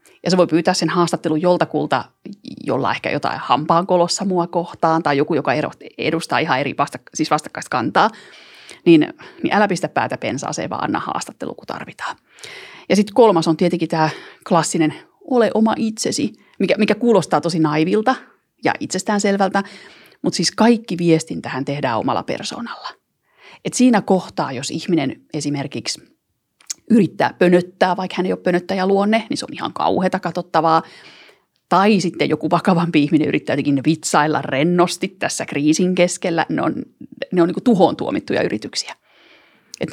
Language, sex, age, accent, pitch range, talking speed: Finnish, female, 30-49, native, 160-210 Hz, 145 wpm